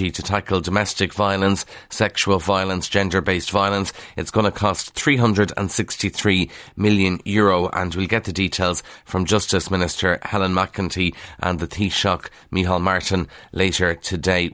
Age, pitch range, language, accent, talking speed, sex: 30-49, 90-105 Hz, English, Irish, 135 wpm, male